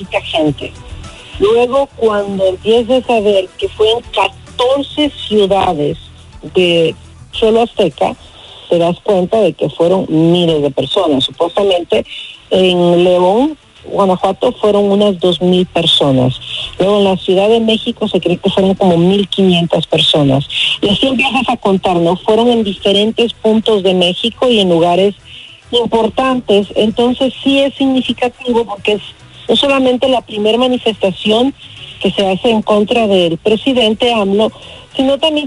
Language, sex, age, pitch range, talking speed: Spanish, female, 50-69, 185-245 Hz, 140 wpm